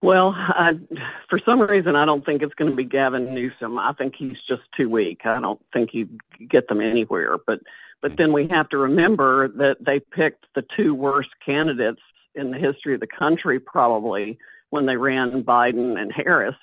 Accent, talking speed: American, 190 wpm